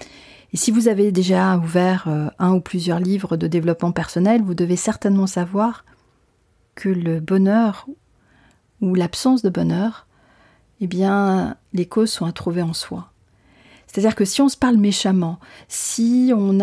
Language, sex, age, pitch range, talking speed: French, female, 40-59, 175-215 Hz, 150 wpm